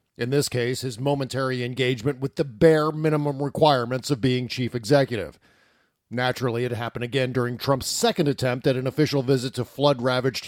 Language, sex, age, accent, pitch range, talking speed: English, male, 50-69, American, 130-165 Hz, 165 wpm